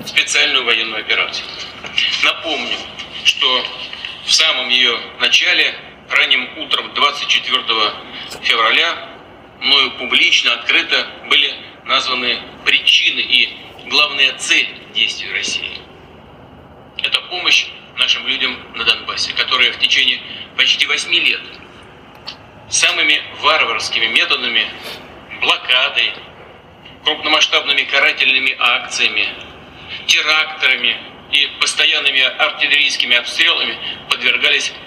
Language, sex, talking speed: English, male, 85 wpm